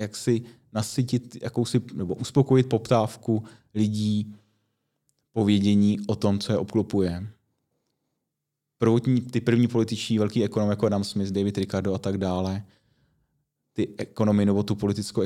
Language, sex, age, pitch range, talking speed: Czech, male, 30-49, 95-110 Hz, 125 wpm